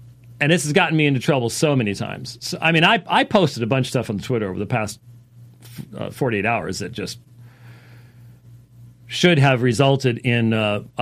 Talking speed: 190 wpm